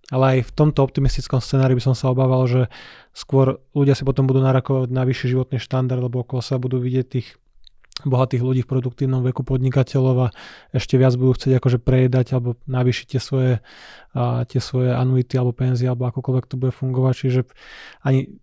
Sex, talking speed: male, 180 wpm